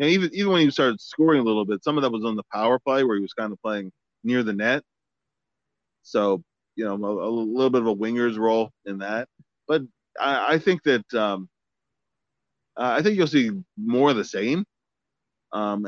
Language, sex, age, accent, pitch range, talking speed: English, male, 30-49, American, 110-145 Hz, 210 wpm